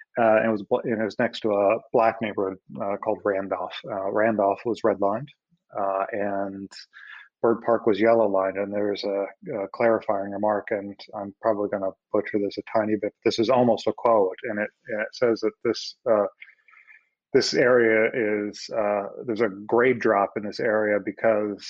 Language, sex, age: English, male, 30-49